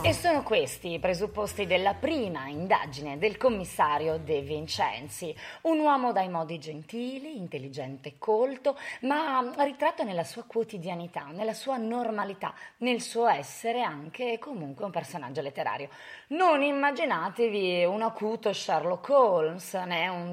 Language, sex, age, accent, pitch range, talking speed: Italian, female, 20-39, native, 170-240 Hz, 130 wpm